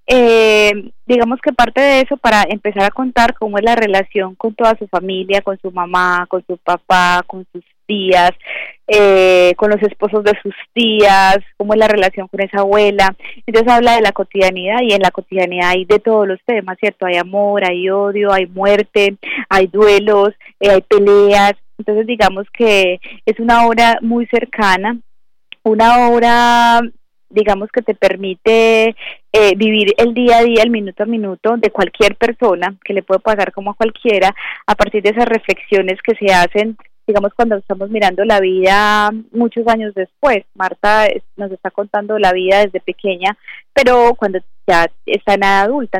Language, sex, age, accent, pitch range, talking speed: Spanish, female, 20-39, Colombian, 195-230 Hz, 170 wpm